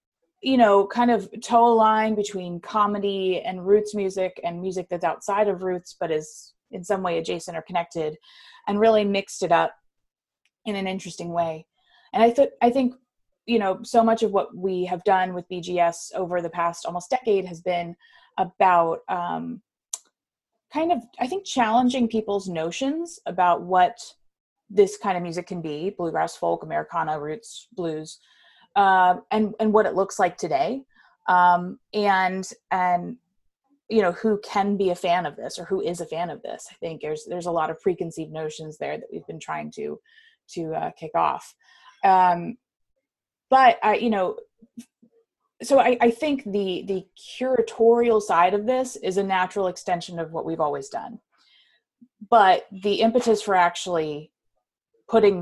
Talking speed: 170 wpm